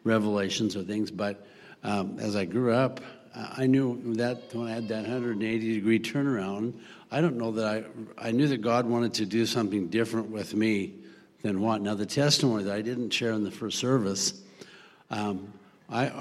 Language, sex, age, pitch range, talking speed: English, male, 60-79, 100-115 Hz, 190 wpm